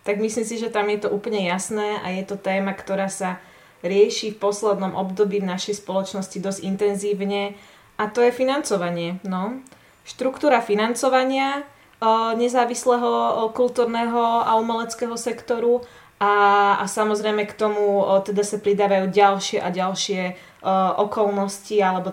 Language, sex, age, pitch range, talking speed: Slovak, female, 20-39, 195-210 Hz, 145 wpm